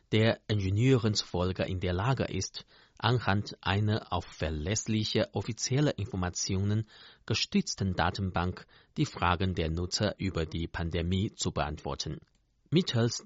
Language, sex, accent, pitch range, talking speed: German, male, German, 90-115 Hz, 110 wpm